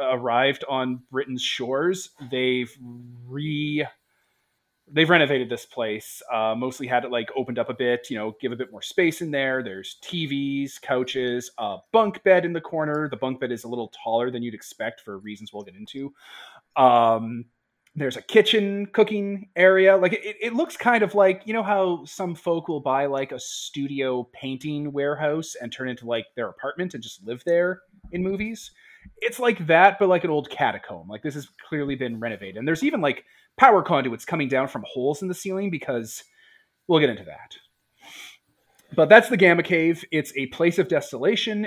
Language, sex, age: English, male, 30-49